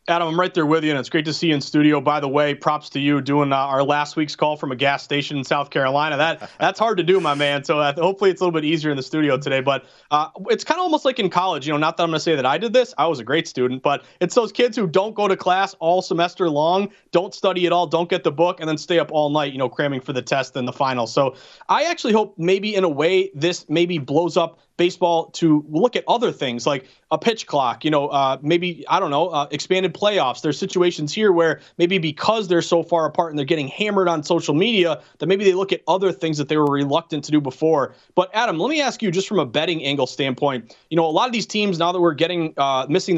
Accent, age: American, 30-49